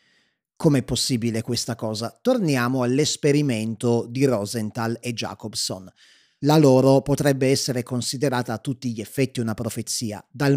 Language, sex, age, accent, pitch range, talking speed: Italian, male, 30-49, native, 120-155 Hz, 125 wpm